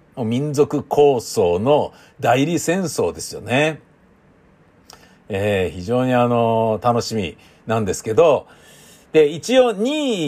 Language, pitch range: Japanese, 110-160 Hz